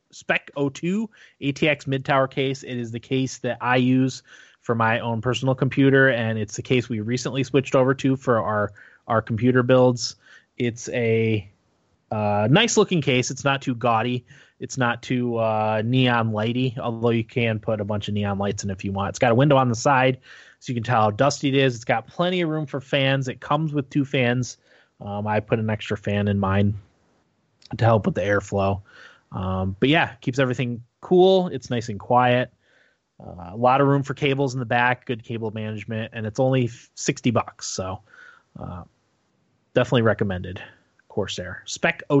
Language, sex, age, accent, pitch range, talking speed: English, male, 20-39, American, 110-140 Hz, 195 wpm